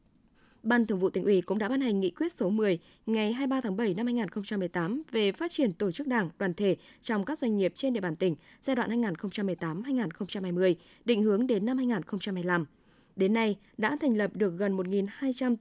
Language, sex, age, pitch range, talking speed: Vietnamese, female, 20-39, 190-245 Hz, 195 wpm